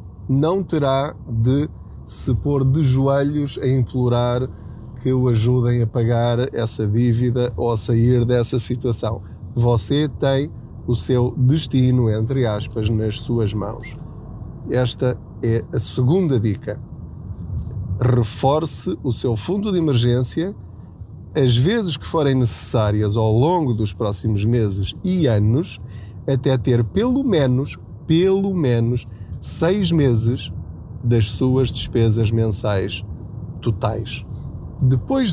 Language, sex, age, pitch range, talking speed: Portuguese, male, 20-39, 110-140 Hz, 115 wpm